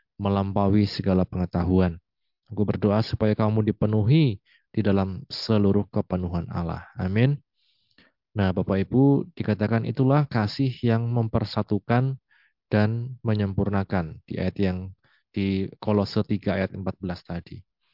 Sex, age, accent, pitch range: male, 20-39, native, 95-115 Hz